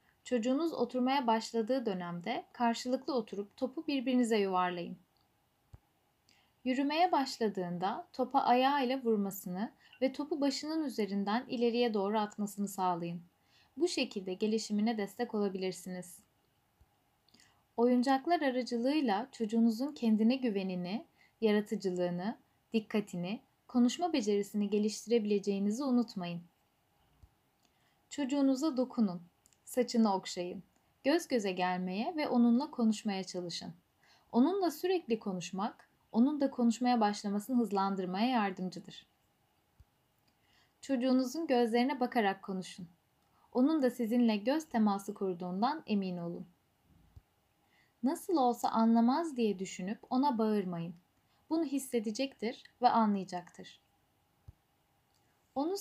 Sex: female